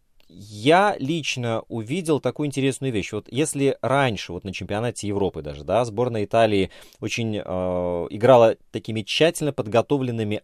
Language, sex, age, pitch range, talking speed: Russian, male, 20-39, 105-150 Hz, 130 wpm